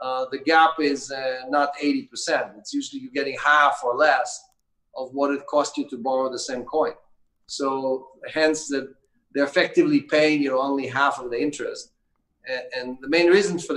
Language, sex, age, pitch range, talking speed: English, male, 40-59, 130-165 Hz, 190 wpm